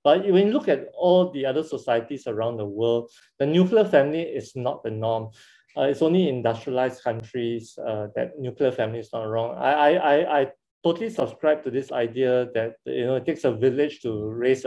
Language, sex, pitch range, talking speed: English, male, 120-155 Hz, 195 wpm